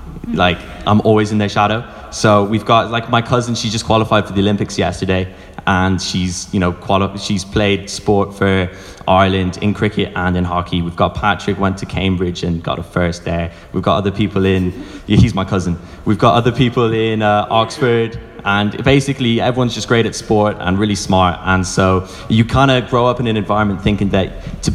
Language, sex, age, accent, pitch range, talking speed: English, male, 10-29, British, 95-110 Hz, 205 wpm